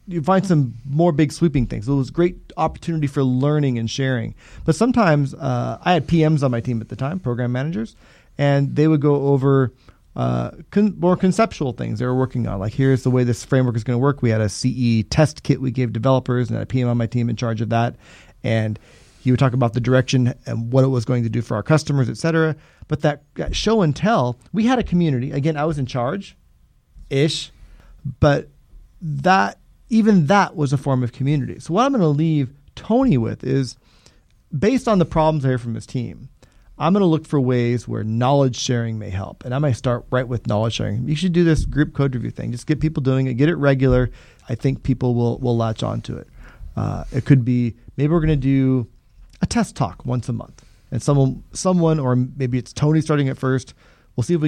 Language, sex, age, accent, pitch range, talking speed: English, male, 30-49, American, 120-155 Hz, 225 wpm